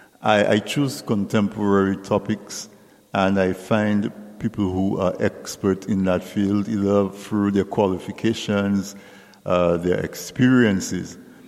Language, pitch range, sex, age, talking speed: English, 95-110 Hz, male, 50-69, 110 wpm